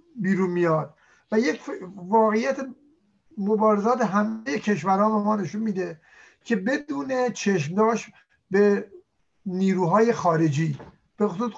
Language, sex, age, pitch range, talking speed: Persian, male, 50-69, 180-225 Hz, 95 wpm